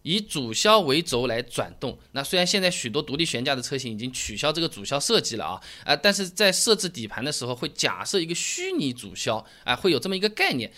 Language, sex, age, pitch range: Chinese, male, 20-39, 130-205 Hz